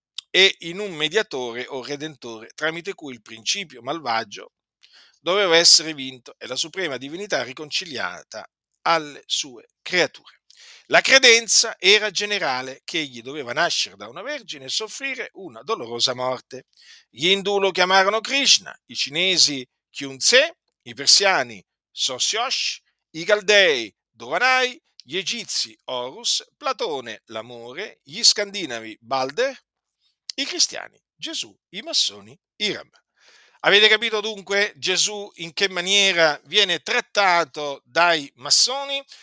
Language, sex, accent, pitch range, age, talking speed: Italian, male, native, 135-225 Hz, 50-69, 120 wpm